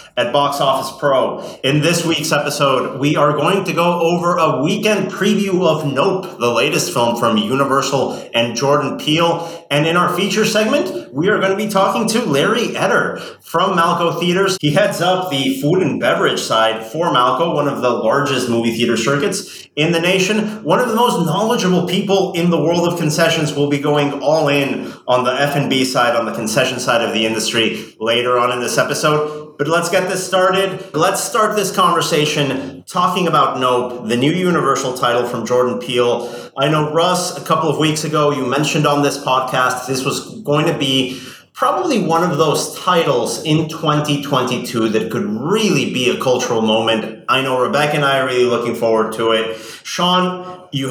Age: 30-49